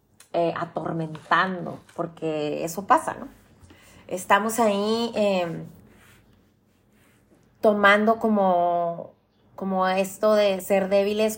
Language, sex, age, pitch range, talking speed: Spanish, female, 30-49, 170-210 Hz, 85 wpm